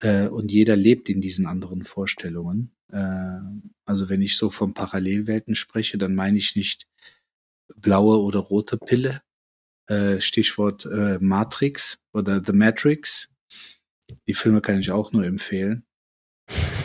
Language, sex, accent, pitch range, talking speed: German, male, German, 100-115 Hz, 120 wpm